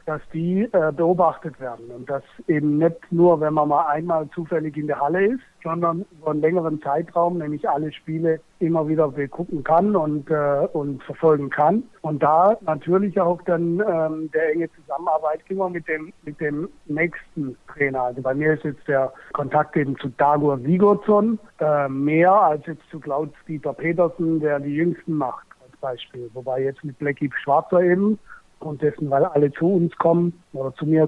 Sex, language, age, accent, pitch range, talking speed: male, German, 60-79, German, 140-165 Hz, 175 wpm